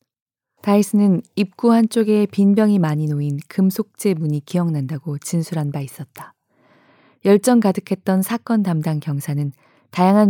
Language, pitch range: Korean, 155-200 Hz